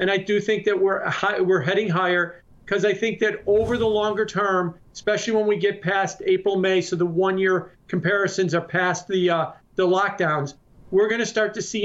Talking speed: 205 wpm